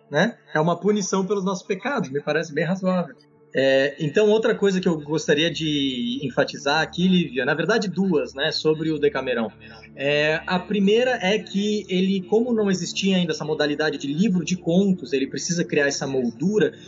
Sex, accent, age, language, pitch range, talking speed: male, Brazilian, 20-39, Portuguese, 155-205 Hz, 180 wpm